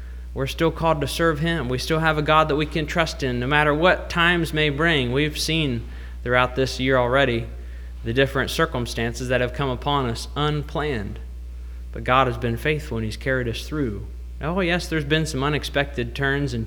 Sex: male